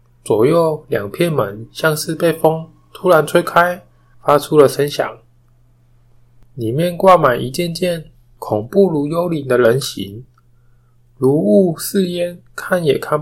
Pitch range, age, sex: 120-165 Hz, 20-39, male